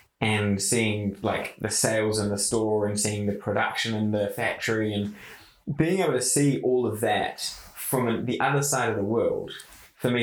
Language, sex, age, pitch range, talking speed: English, male, 20-39, 105-125 Hz, 190 wpm